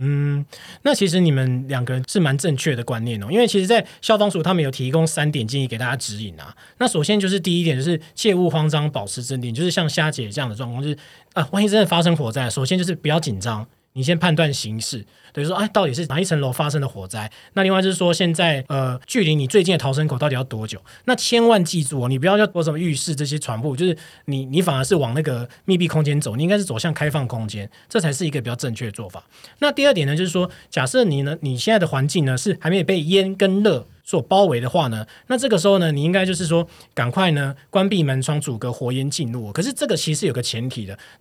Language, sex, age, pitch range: Chinese, male, 20-39, 130-180 Hz